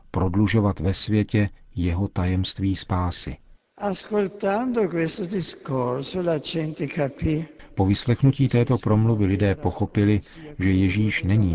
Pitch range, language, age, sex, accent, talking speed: 90-105 Hz, Czech, 50-69, male, native, 80 wpm